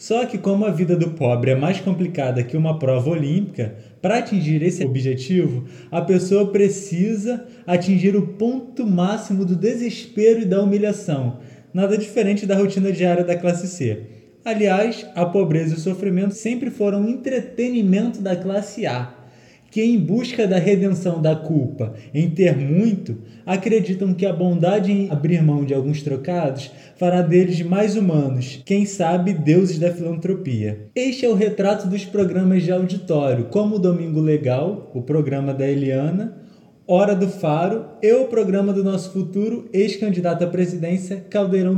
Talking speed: 155 wpm